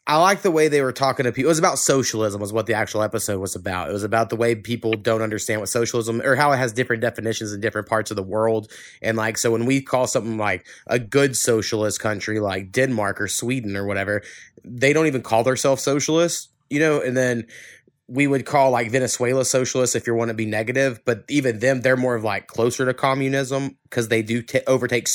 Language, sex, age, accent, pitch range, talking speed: English, male, 20-39, American, 110-135 Hz, 230 wpm